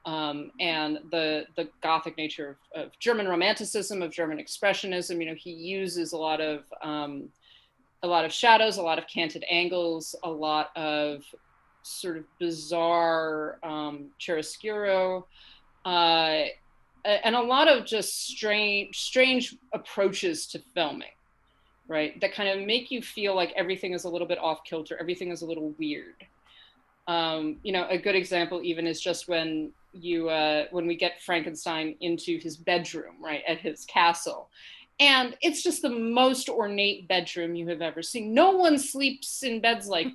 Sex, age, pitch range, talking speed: female, 30-49, 165-245 Hz, 165 wpm